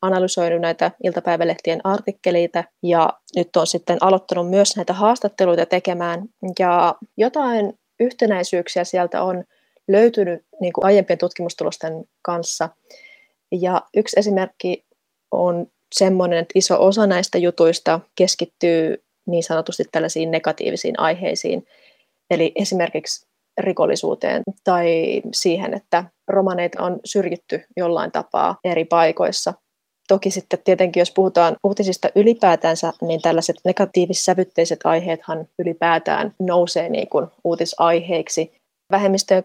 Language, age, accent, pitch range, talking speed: Finnish, 20-39, native, 170-195 Hz, 100 wpm